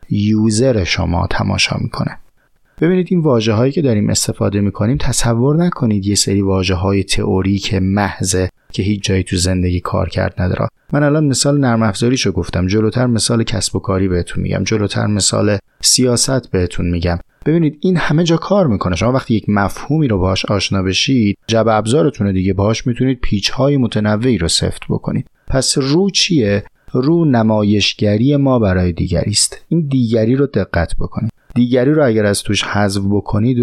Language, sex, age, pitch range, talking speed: Persian, male, 30-49, 95-130 Hz, 160 wpm